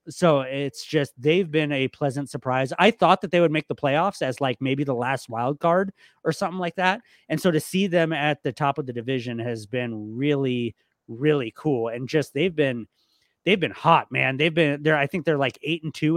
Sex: male